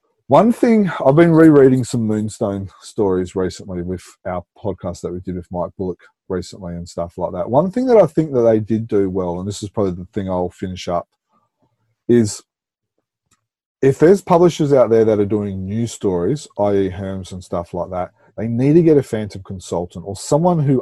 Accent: Australian